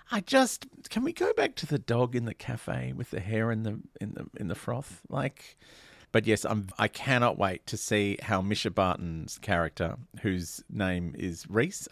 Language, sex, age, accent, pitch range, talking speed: English, male, 40-59, Australian, 100-130 Hz, 195 wpm